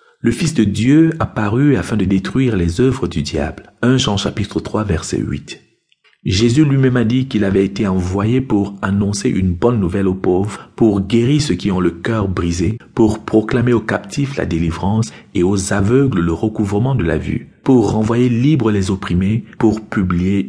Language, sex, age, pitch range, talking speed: French, male, 50-69, 95-125 Hz, 180 wpm